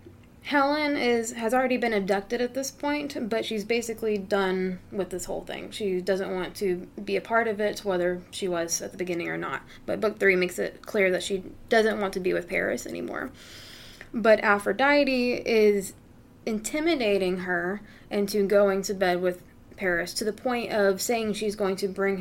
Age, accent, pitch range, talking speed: 20-39, American, 185-230 Hz, 185 wpm